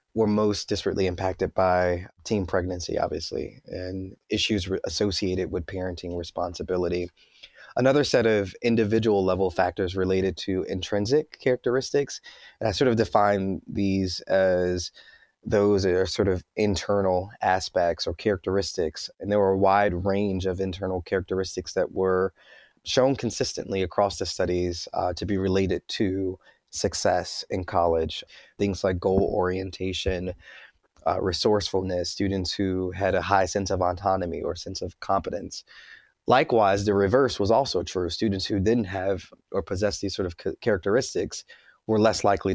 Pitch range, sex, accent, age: 90-100 Hz, male, American, 30-49